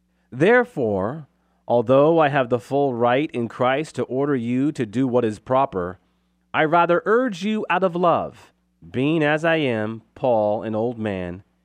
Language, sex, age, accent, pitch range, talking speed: English, male, 30-49, American, 110-165 Hz, 165 wpm